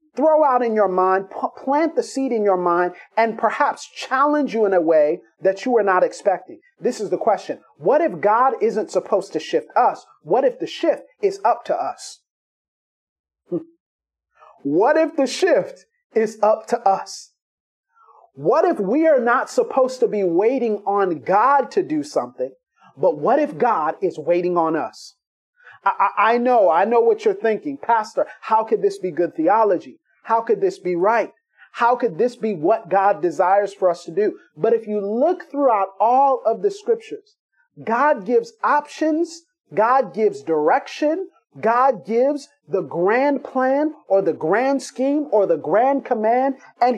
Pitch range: 210-320 Hz